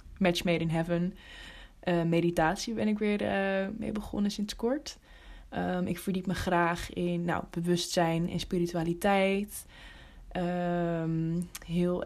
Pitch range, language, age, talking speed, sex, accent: 170-195 Hz, Dutch, 20-39, 115 wpm, female, Dutch